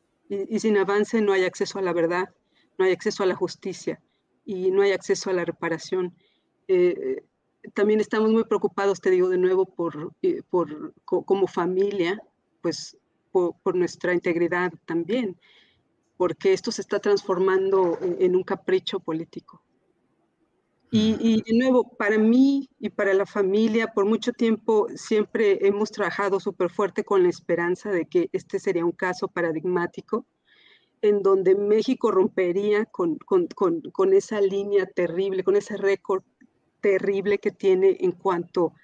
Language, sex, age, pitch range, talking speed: Spanish, female, 40-59, 185-230 Hz, 150 wpm